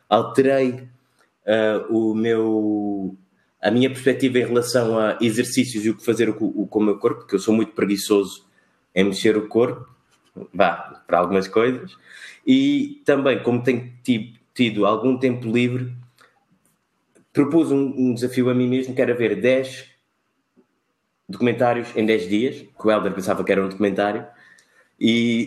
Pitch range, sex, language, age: 105-125 Hz, male, Portuguese, 20-39